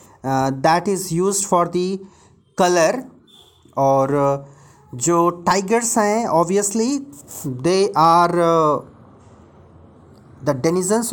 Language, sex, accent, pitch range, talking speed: Hindi, male, native, 160-225 Hz, 80 wpm